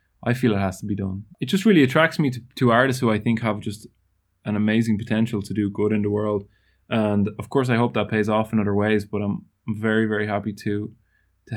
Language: English